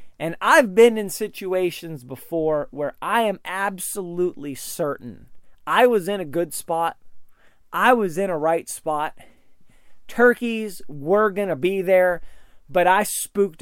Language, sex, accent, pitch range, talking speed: English, male, American, 145-195 Hz, 140 wpm